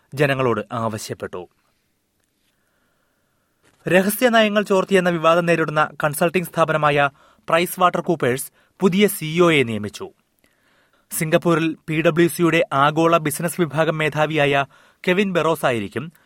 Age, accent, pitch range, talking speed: 30-49, native, 135-180 Hz, 80 wpm